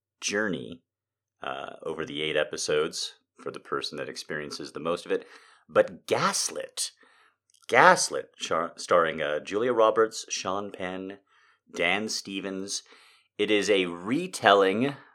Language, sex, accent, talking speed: English, male, American, 125 wpm